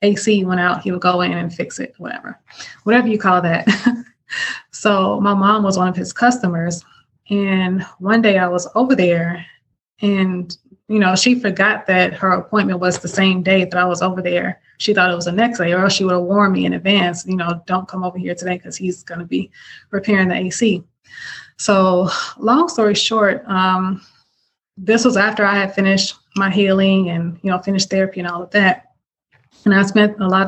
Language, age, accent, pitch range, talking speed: English, 20-39, American, 180-205 Hz, 205 wpm